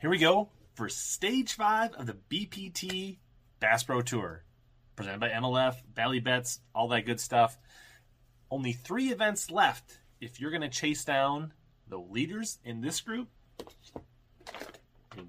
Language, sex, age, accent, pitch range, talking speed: English, male, 30-49, American, 115-155 Hz, 145 wpm